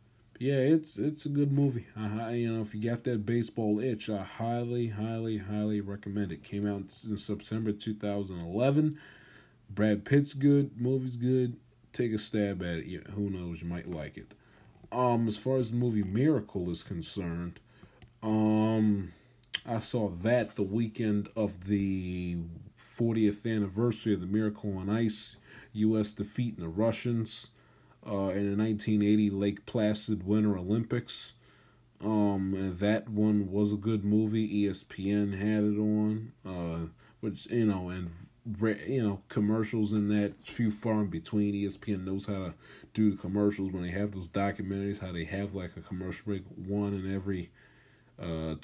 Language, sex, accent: English, male, American